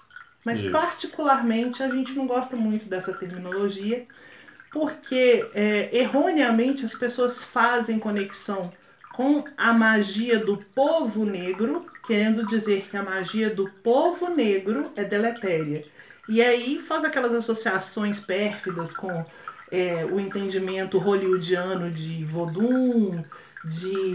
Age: 40-59